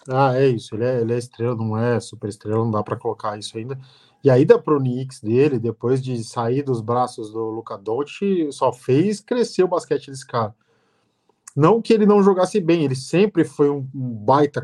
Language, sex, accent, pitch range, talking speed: Portuguese, male, Brazilian, 130-175 Hz, 210 wpm